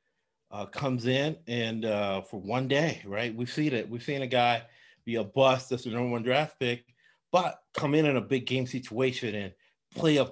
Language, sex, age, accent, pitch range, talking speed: English, male, 40-59, American, 115-135 Hz, 210 wpm